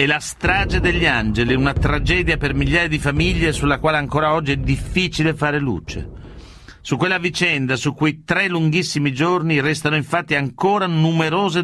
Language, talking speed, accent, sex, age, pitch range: Italian, 160 wpm, native, male, 50-69, 130-160 Hz